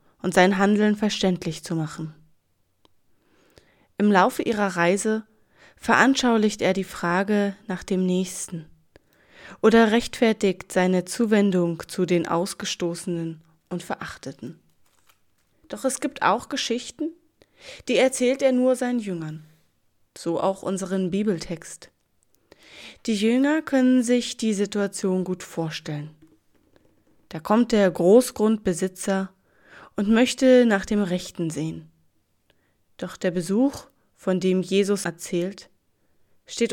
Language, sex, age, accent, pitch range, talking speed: German, female, 20-39, German, 175-220 Hz, 110 wpm